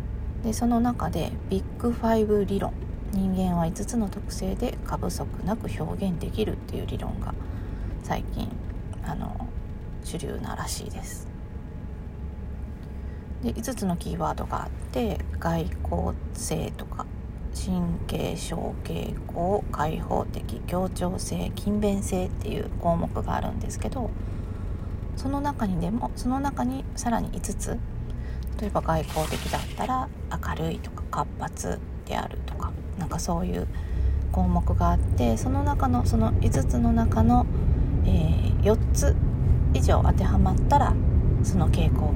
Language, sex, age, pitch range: Japanese, female, 40-59, 80-100 Hz